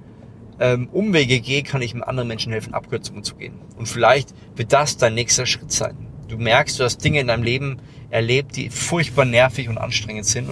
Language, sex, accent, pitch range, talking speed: German, male, German, 115-140 Hz, 195 wpm